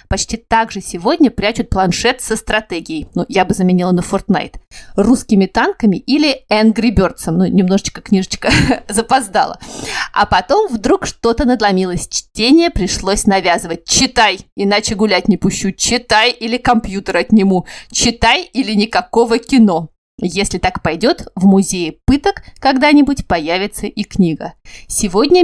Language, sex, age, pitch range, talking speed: Russian, female, 30-49, 190-240 Hz, 130 wpm